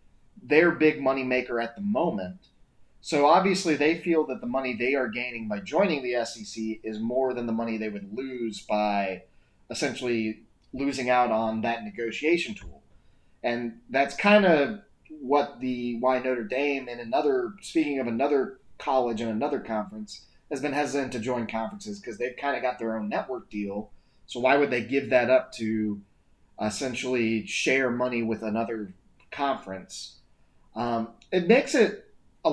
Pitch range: 110-150 Hz